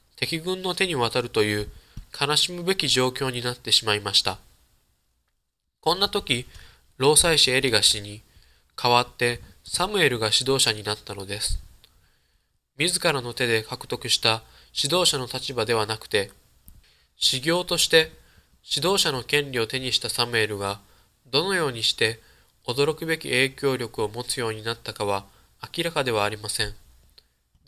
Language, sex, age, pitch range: Japanese, male, 20-39, 105-140 Hz